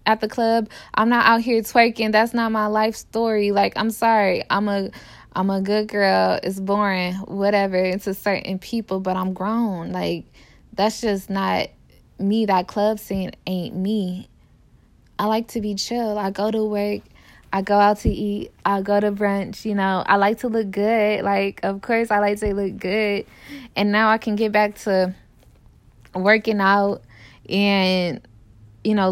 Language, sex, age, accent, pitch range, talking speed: English, female, 10-29, American, 185-215 Hz, 175 wpm